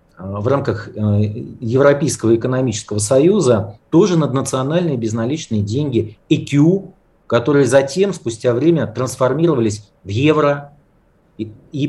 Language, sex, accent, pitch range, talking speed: Russian, male, native, 115-155 Hz, 95 wpm